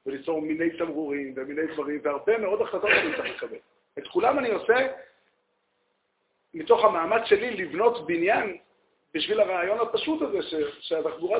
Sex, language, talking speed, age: male, Hebrew, 135 wpm, 50-69